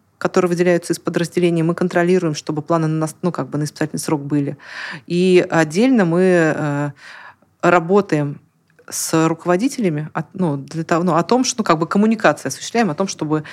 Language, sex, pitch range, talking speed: Russian, female, 155-195 Hz, 165 wpm